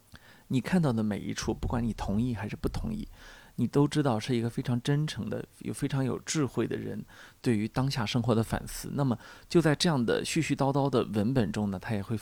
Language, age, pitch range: Chinese, 20-39, 105-130 Hz